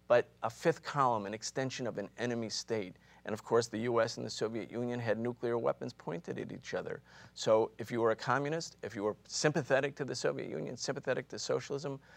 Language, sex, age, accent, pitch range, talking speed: English, male, 50-69, American, 110-135 Hz, 210 wpm